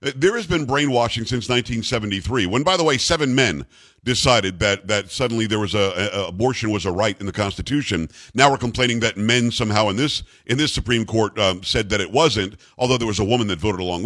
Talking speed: 220 wpm